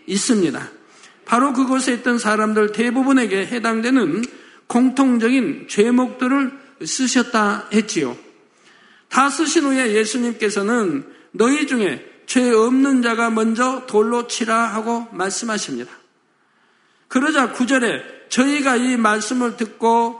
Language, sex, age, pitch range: Korean, male, 50-69, 215-265 Hz